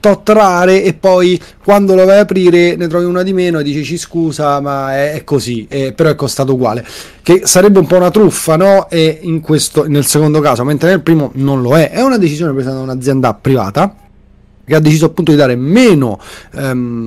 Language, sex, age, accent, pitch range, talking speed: Italian, male, 30-49, native, 135-185 Hz, 210 wpm